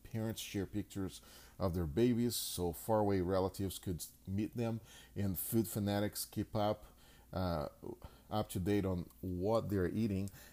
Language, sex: English, male